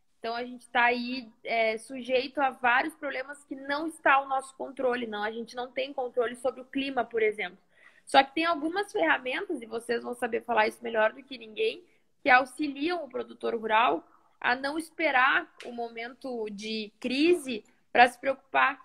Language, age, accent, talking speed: Portuguese, 10-29, Brazilian, 180 wpm